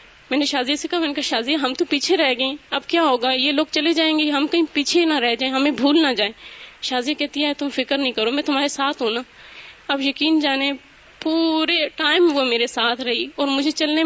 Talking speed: 235 wpm